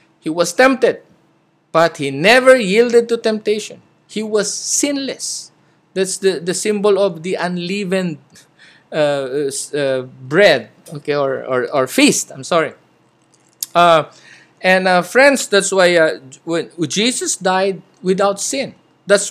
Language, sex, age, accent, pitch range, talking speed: English, male, 50-69, Filipino, 180-260 Hz, 130 wpm